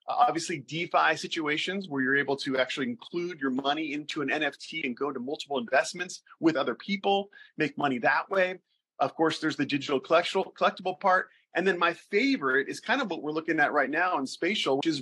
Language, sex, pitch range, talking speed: English, male, 140-185 Hz, 200 wpm